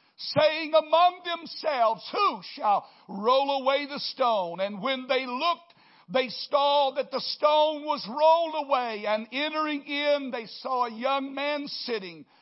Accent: American